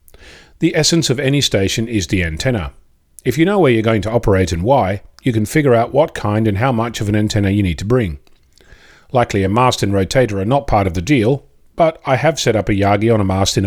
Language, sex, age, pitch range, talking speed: English, male, 40-59, 95-130 Hz, 245 wpm